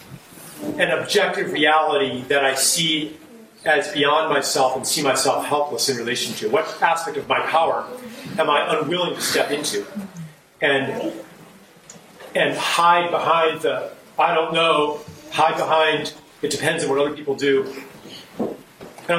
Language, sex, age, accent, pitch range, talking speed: English, male, 40-59, American, 145-180 Hz, 140 wpm